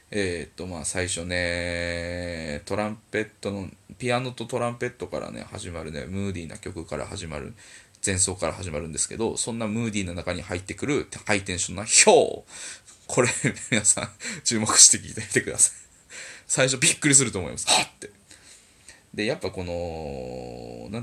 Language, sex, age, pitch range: Japanese, male, 20-39, 90-110 Hz